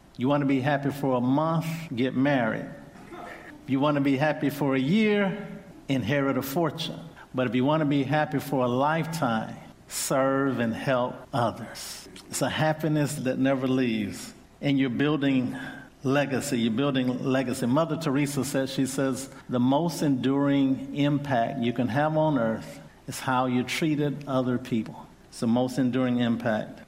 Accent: American